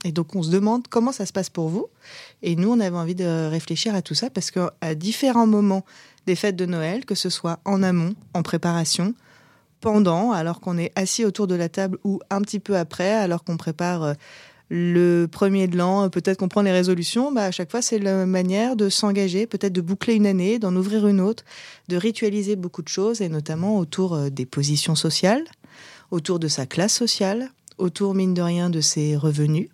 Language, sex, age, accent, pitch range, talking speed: French, female, 20-39, French, 160-200 Hz, 210 wpm